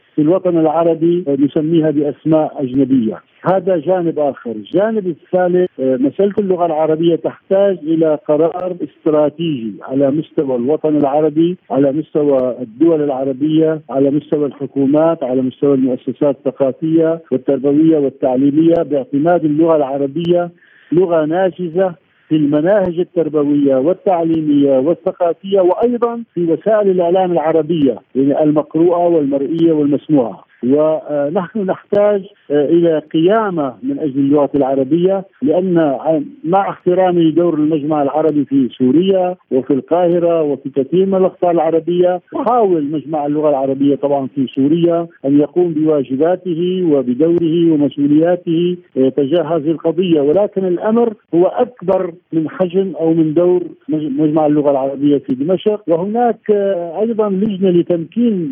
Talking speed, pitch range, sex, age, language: 110 wpm, 145-180 Hz, male, 50-69, Arabic